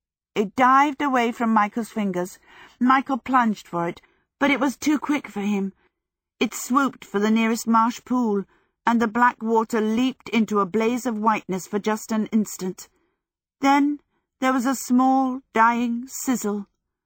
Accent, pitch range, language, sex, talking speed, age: British, 170-230 Hz, English, female, 160 wpm, 50-69